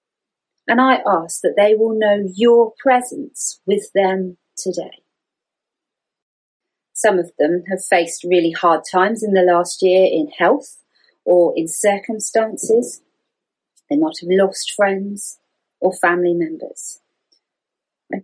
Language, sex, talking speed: English, female, 125 wpm